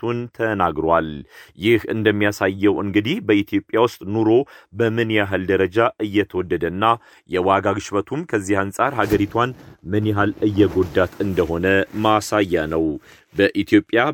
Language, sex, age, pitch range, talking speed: Amharic, male, 40-59, 95-110 Hz, 70 wpm